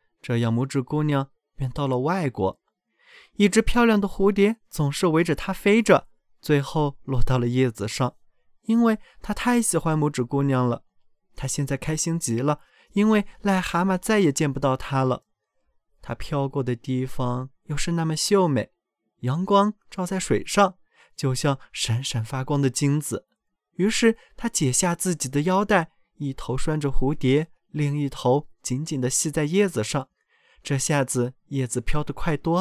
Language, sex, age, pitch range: Chinese, male, 20-39, 130-190 Hz